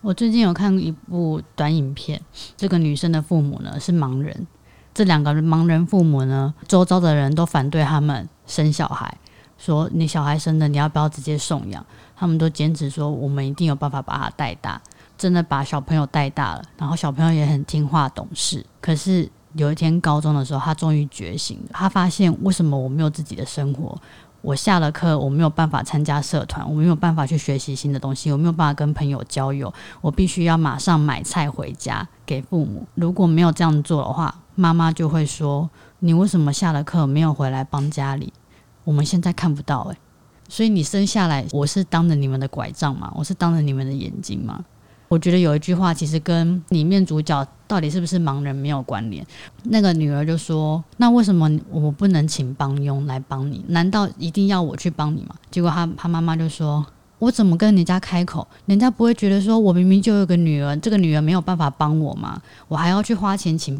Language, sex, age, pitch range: Chinese, female, 20-39, 145-175 Hz